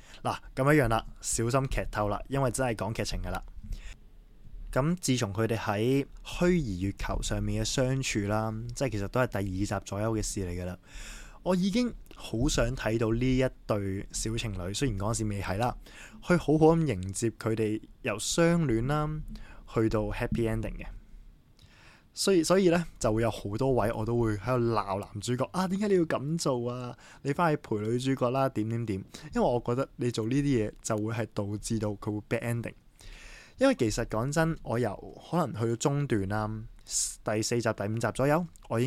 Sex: male